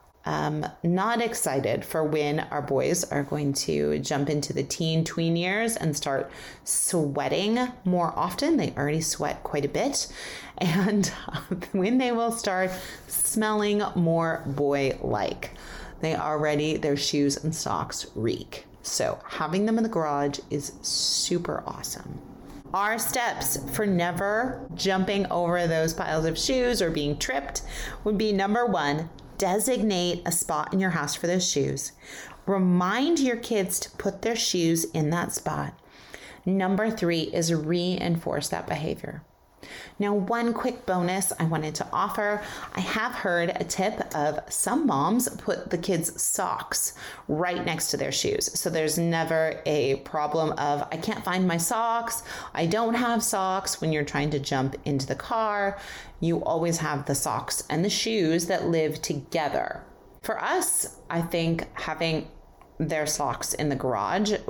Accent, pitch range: American, 150-200 Hz